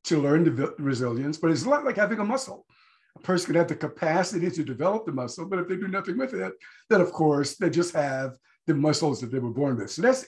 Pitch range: 150-230 Hz